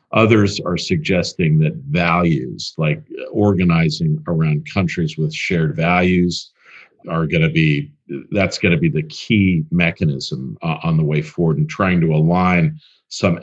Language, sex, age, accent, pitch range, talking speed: English, male, 50-69, American, 85-130 Hz, 135 wpm